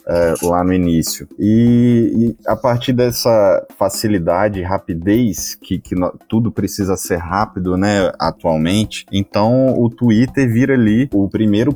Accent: Brazilian